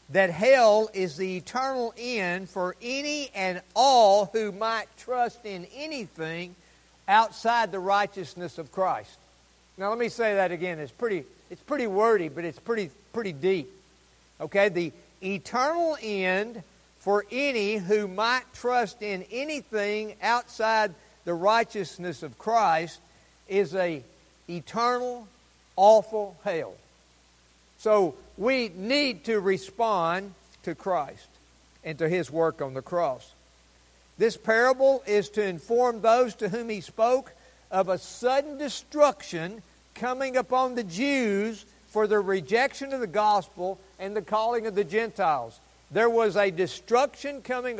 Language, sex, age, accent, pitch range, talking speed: English, male, 50-69, American, 180-230 Hz, 135 wpm